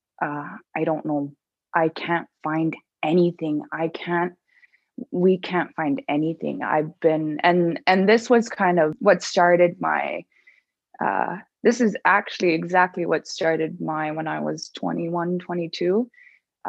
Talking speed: 135 wpm